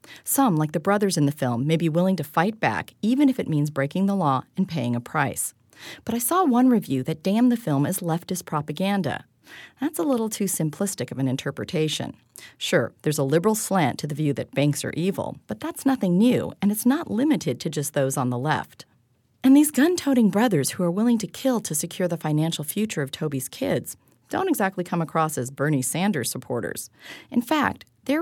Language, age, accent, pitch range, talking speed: English, 40-59, American, 145-205 Hz, 210 wpm